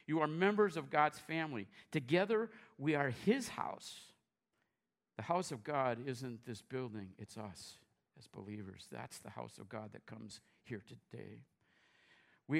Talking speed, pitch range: 150 wpm, 110-145 Hz